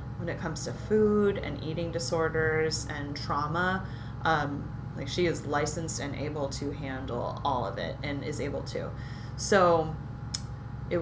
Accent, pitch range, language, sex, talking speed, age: American, 125-175 Hz, English, female, 150 wpm, 30-49